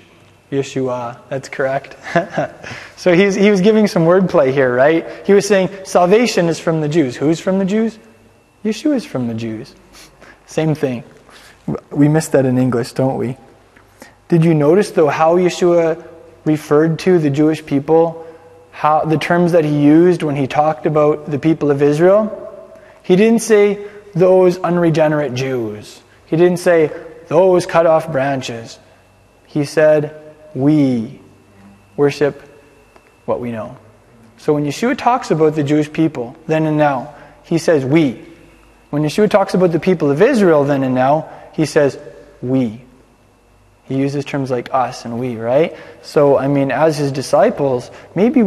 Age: 20-39